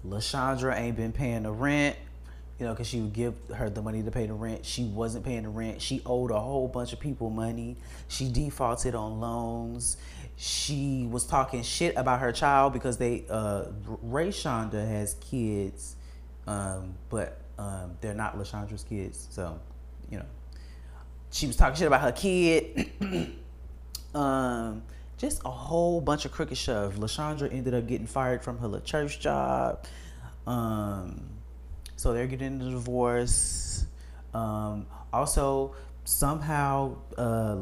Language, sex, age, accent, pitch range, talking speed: English, male, 20-39, American, 80-130 Hz, 150 wpm